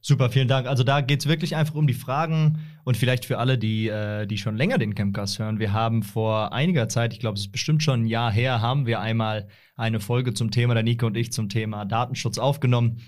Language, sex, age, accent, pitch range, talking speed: German, male, 30-49, German, 110-135 Hz, 245 wpm